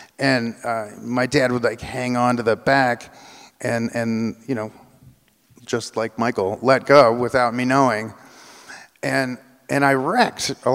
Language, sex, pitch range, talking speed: English, male, 120-155 Hz, 155 wpm